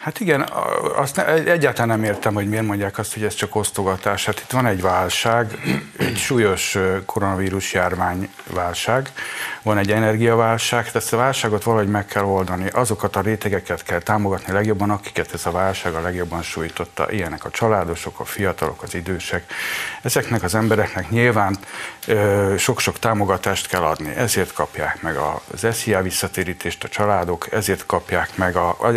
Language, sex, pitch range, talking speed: Hungarian, male, 95-110 Hz, 160 wpm